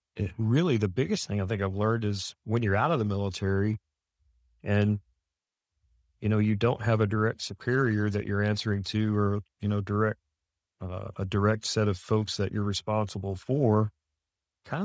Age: 40-59